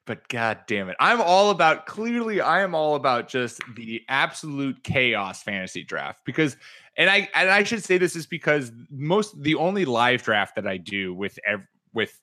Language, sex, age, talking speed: English, male, 20-39, 190 wpm